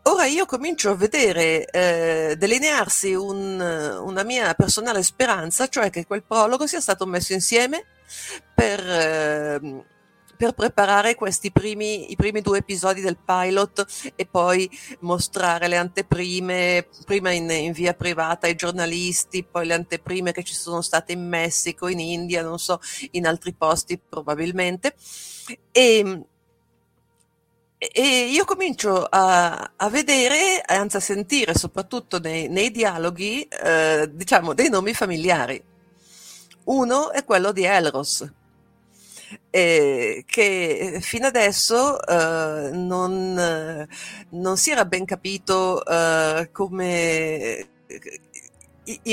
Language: Italian